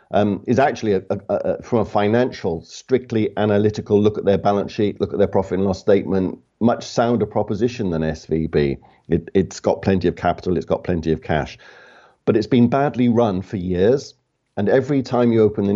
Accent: British